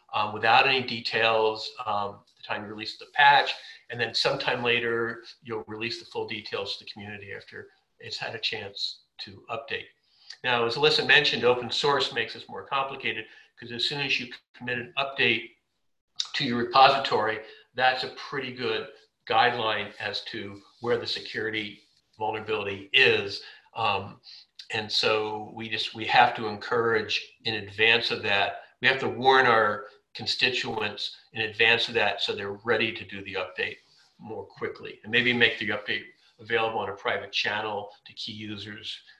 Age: 50-69